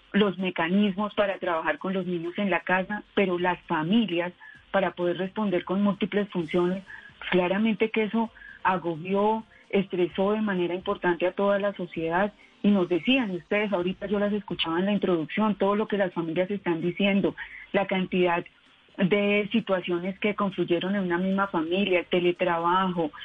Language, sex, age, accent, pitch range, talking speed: Spanish, female, 30-49, Colombian, 175-200 Hz, 155 wpm